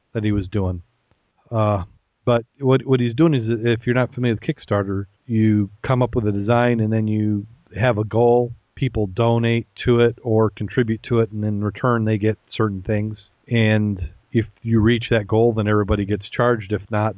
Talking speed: 195 wpm